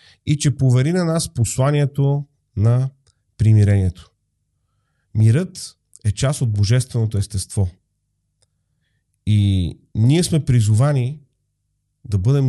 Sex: male